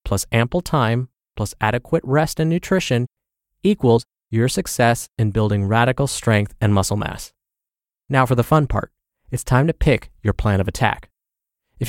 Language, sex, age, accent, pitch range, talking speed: English, male, 20-39, American, 110-155 Hz, 160 wpm